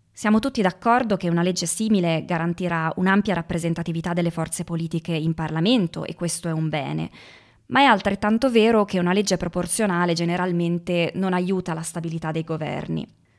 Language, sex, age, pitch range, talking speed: Italian, female, 20-39, 170-205 Hz, 155 wpm